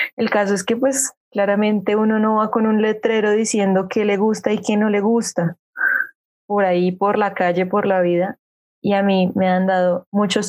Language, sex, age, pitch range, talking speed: Spanish, female, 20-39, 185-220 Hz, 205 wpm